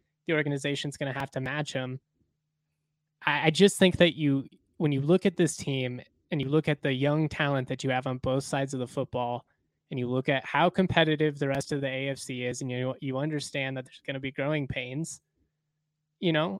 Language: English